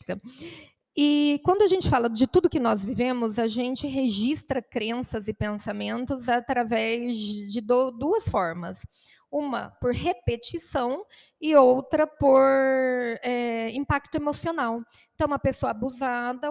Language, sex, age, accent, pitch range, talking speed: Portuguese, female, 20-39, Brazilian, 235-290 Hz, 115 wpm